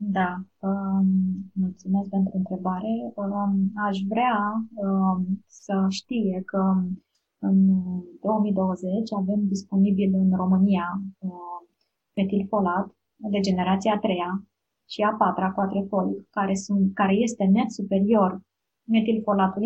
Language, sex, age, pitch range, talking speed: Romanian, female, 20-39, 190-210 Hz, 115 wpm